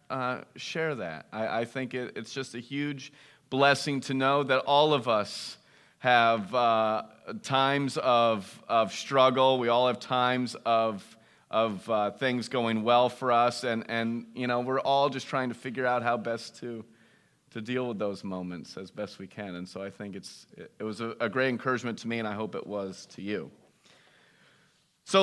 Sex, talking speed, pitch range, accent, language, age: male, 195 wpm, 120-175 Hz, American, English, 30-49